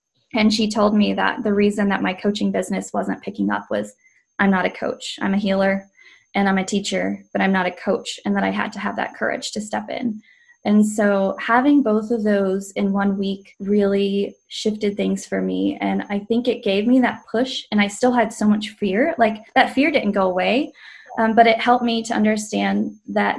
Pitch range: 200-230 Hz